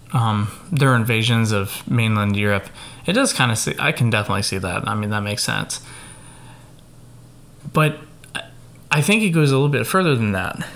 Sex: male